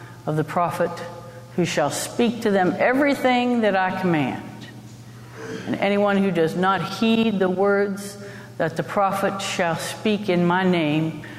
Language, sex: English, female